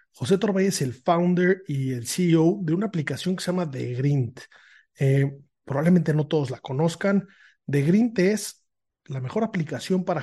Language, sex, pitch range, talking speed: Spanish, male, 140-175 Hz, 170 wpm